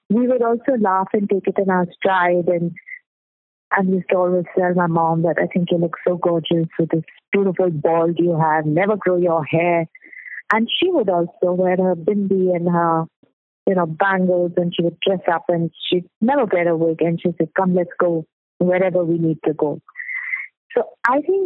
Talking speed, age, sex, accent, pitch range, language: 200 wpm, 30-49, female, Indian, 175-210 Hz, English